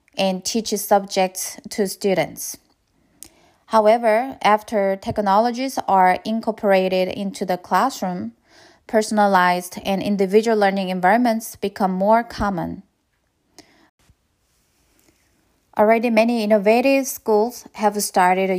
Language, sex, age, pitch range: Korean, female, 20-39, 195-230 Hz